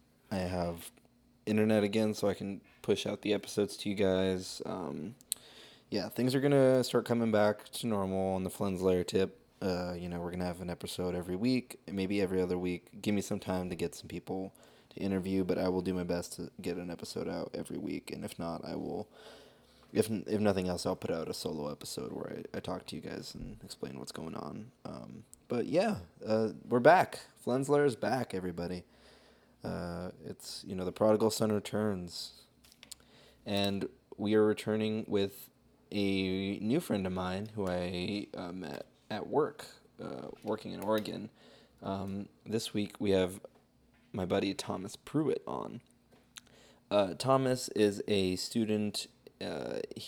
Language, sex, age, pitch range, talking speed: English, male, 20-39, 95-110 Hz, 175 wpm